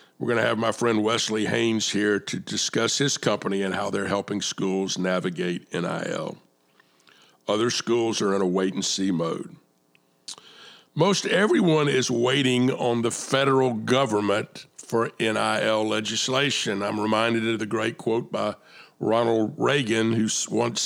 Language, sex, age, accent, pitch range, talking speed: English, male, 50-69, American, 95-125 Hz, 140 wpm